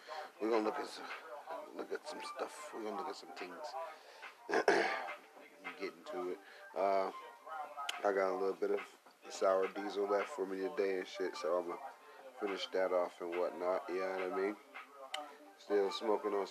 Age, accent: 30-49, American